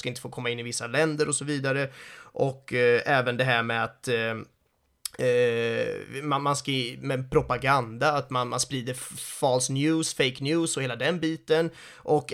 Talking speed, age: 160 wpm, 30-49